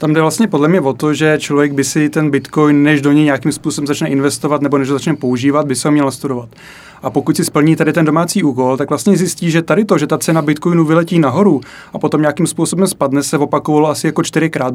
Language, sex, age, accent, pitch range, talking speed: Czech, male, 30-49, native, 140-155 Hz, 240 wpm